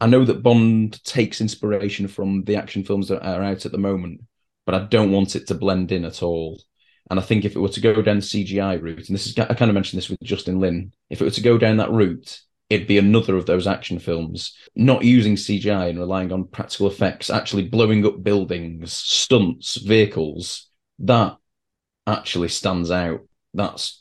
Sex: male